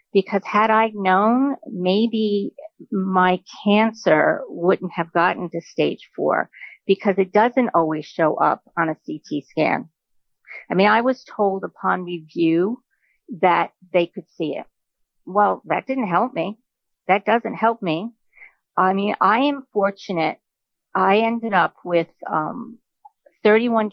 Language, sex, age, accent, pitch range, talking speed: English, female, 50-69, American, 175-220 Hz, 140 wpm